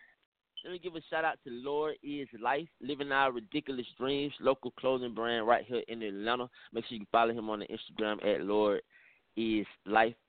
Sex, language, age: male, English, 30-49